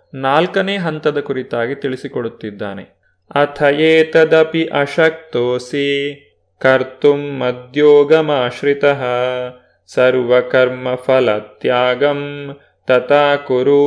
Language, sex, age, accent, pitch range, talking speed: Kannada, male, 30-49, native, 130-160 Hz, 45 wpm